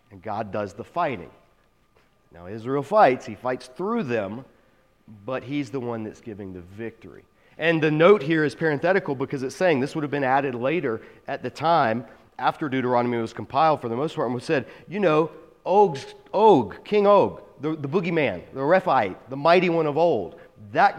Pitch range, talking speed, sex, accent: 120-160 Hz, 185 wpm, male, American